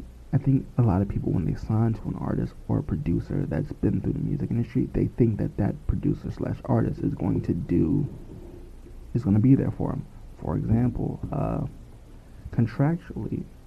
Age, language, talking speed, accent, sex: 20-39, English, 190 wpm, American, male